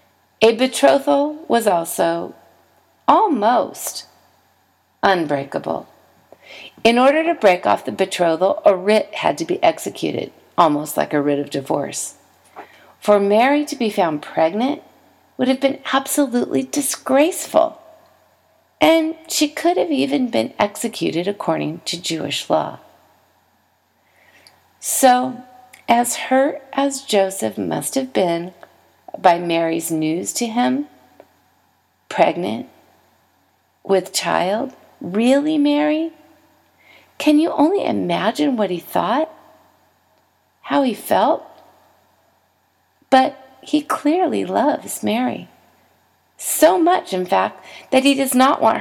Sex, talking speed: female, 110 wpm